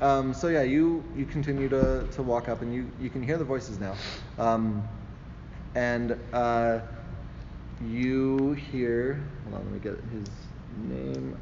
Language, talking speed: English, 160 wpm